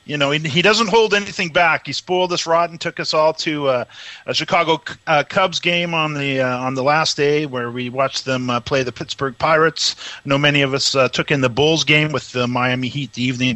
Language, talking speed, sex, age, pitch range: English, 250 wpm, male, 40-59, 130-175 Hz